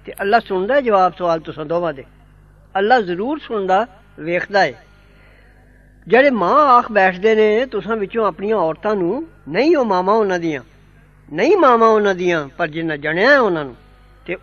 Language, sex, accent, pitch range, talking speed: English, female, Indian, 180-245 Hz, 170 wpm